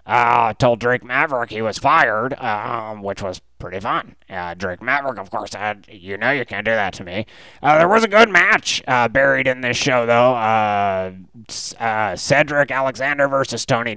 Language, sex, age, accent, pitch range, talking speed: English, male, 30-49, American, 105-135 Hz, 195 wpm